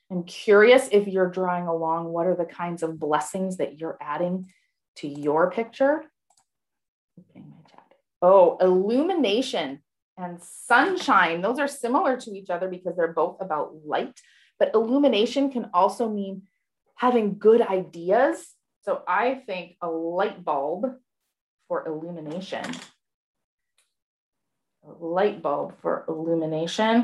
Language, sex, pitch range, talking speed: English, female, 165-215 Hz, 120 wpm